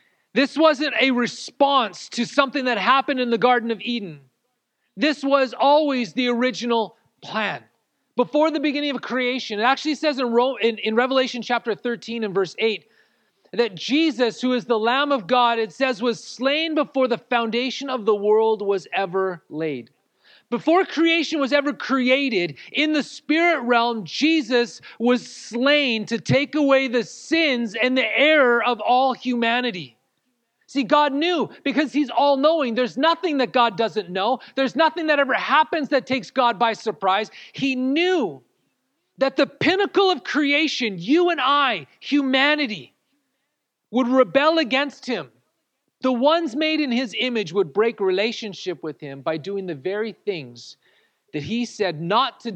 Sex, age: male, 40-59